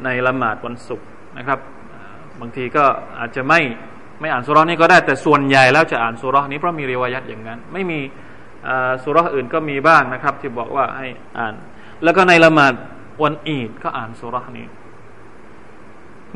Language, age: Thai, 20-39